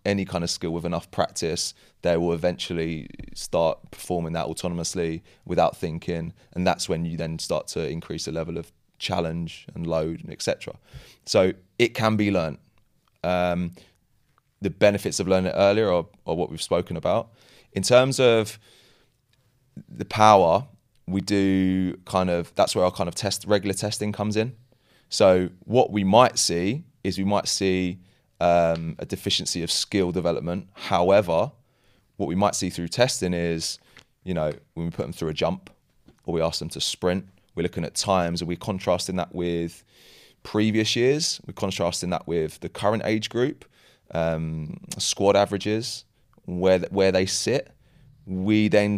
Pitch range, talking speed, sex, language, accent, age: 85-105 Hz, 170 wpm, male, English, British, 20-39